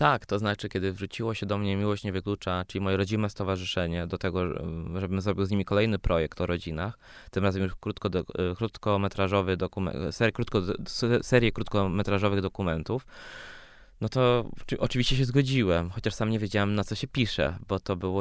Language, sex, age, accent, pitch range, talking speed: Polish, male, 20-39, native, 90-105 Hz, 180 wpm